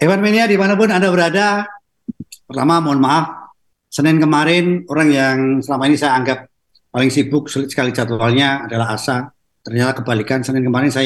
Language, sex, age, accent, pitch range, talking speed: Indonesian, male, 50-69, native, 125-150 Hz, 145 wpm